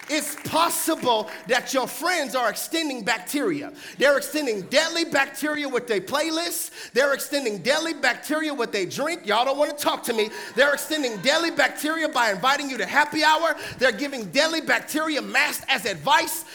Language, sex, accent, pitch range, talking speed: English, male, American, 215-305 Hz, 165 wpm